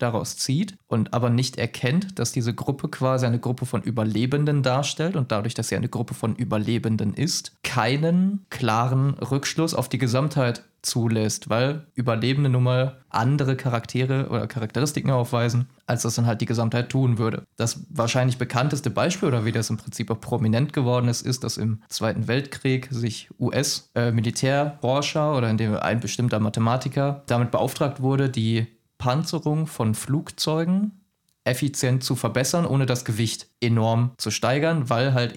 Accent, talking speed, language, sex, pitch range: German, 160 wpm, German, male, 115-140 Hz